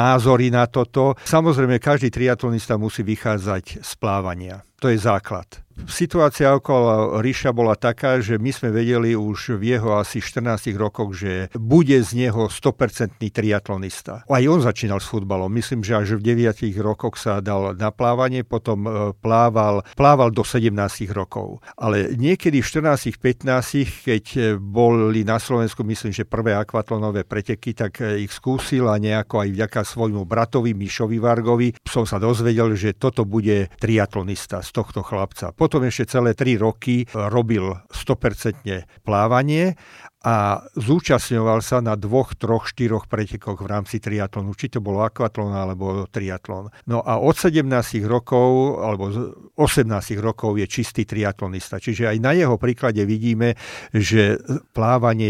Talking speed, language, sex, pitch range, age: 145 wpm, Slovak, male, 105-125 Hz, 50-69